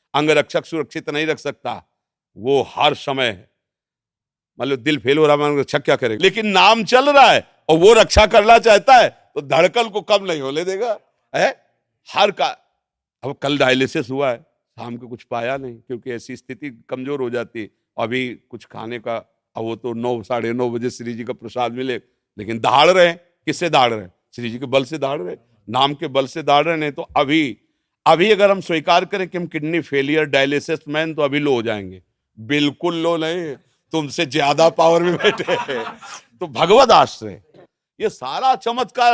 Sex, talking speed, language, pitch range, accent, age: male, 180 wpm, Hindi, 130-200 Hz, native, 50-69